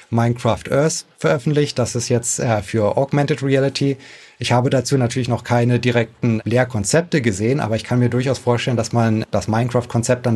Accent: German